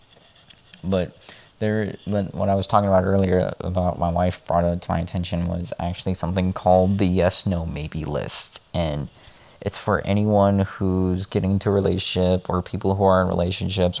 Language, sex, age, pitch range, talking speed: English, male, 20-39, 90-100 Hz, 175 wpm